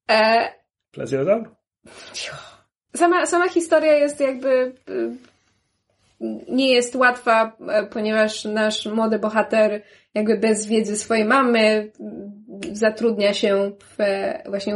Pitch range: 210-245 Hz